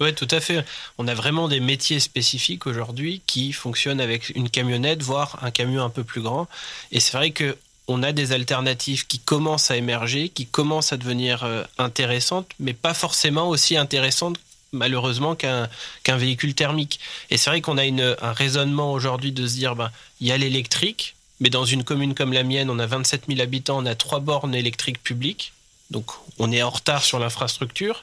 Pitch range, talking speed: 125-150 Hz, 195 wpm